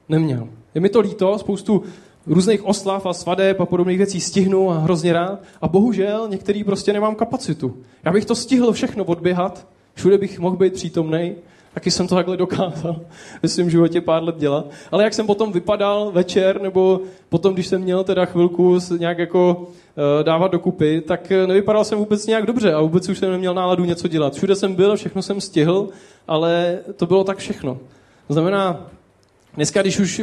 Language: Czech